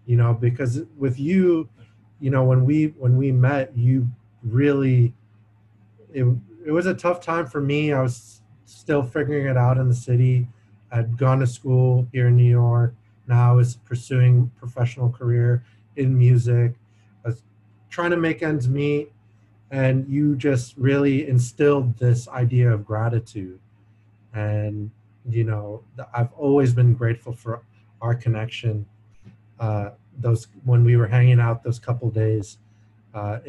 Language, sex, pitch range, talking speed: English, male, 110-125 Hz, 150 wpm